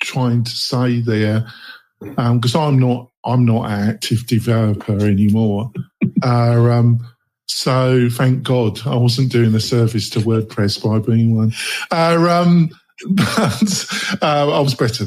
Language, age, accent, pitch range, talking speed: English, 50-69, British, 115-135 Hz, 145 wpm